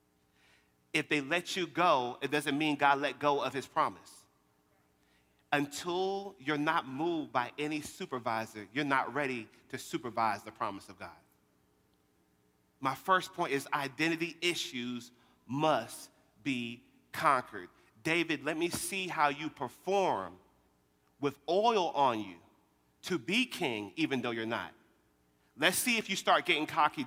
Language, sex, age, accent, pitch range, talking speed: English, male, 40-59, American, 120-190 Hz, 140 wpm